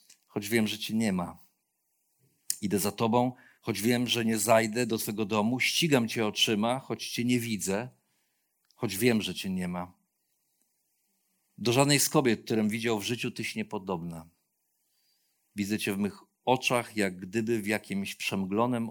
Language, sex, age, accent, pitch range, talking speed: Polish, male, 50-69, native, 105-130 Hz, 160 wpm